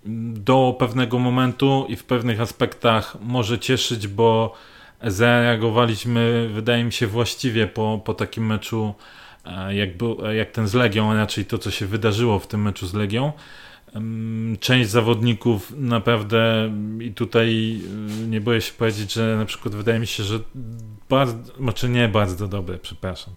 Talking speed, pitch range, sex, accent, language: 145 wpm, 110-120 Hz, male, native, Polish